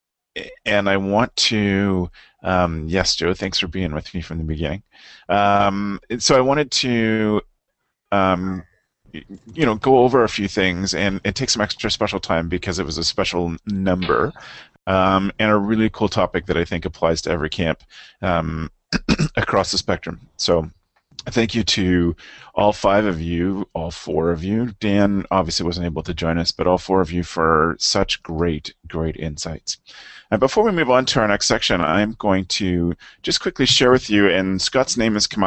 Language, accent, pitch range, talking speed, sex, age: English, American, 90-105 Hz, 185 wpm, male, 30-49